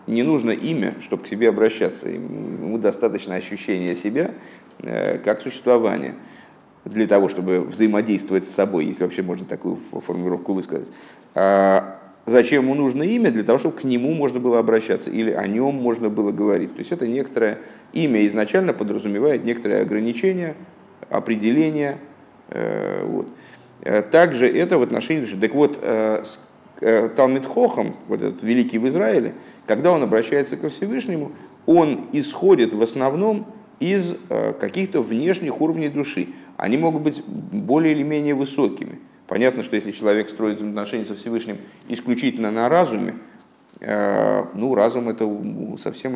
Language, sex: Russian, male